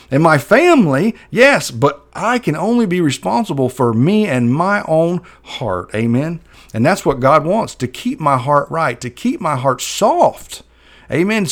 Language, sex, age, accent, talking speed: English, male, 40-59, American, 170 wpm